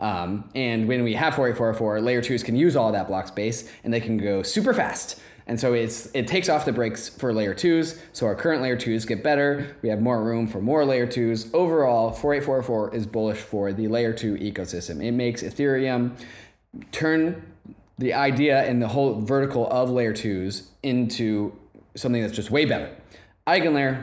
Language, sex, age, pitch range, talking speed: English, male, 20-39, 115-145 Hz, 185 wpm